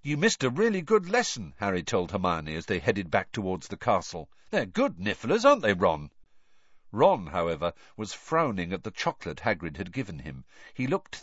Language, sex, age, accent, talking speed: English, male, 50-69, British, 185 wpm